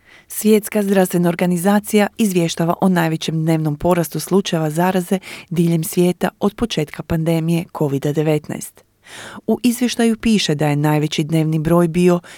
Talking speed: 120 wpm